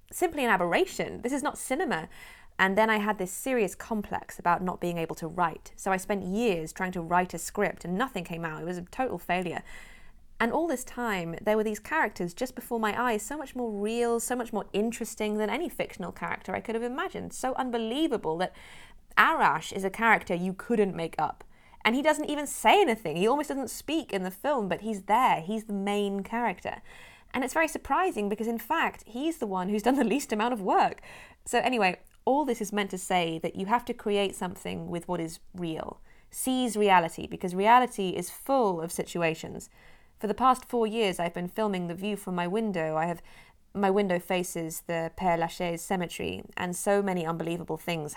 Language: English